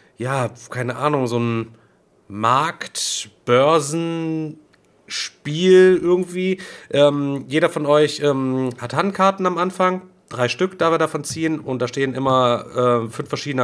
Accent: German